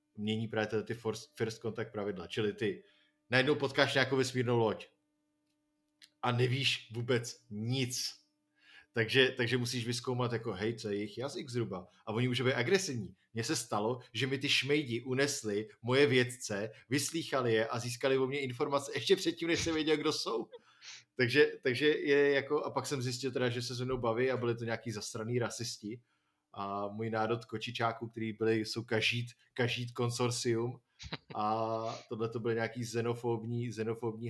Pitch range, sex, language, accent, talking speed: 110-130 Hz, male, Czech, native, 160 wpm